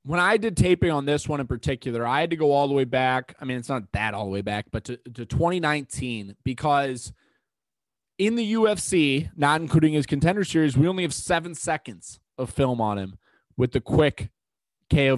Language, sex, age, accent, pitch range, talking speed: English, male, 20-39, American, 115-155 Hz, 205 wpm